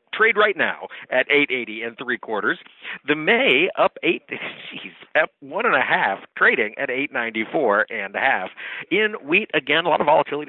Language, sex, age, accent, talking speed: English, male, 50-69, American, 175 wpm